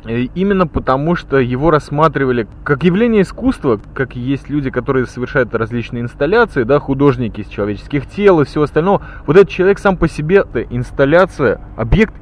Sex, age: male, 20-39